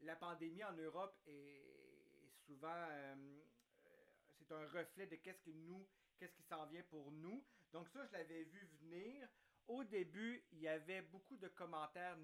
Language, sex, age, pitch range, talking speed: French, male, 40-59, 155-185 Hz, 165 wpm